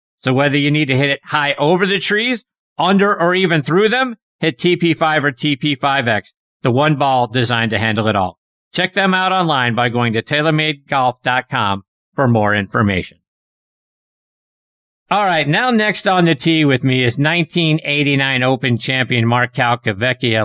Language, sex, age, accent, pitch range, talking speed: English, male, 50-69, American, 125-170 Hz, 160 wpm